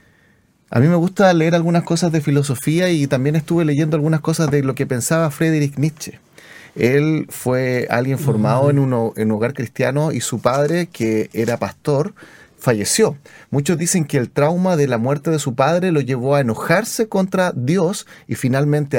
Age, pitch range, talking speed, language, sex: 30-49, 125-160 Hz, 175 wpm, Spanish, male